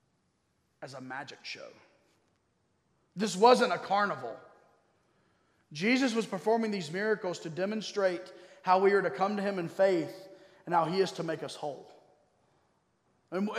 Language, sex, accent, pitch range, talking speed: English, male, American, 185-230 Hz, 145 wpm